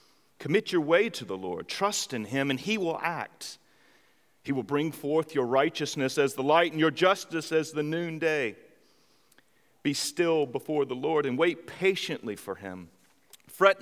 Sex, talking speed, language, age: male, 170 wpm, English, 40-59